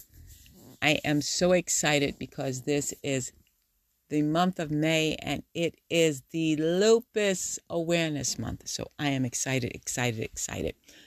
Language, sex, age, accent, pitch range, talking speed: English, female, 50-69, American, 125-165 Hz, 130 wpm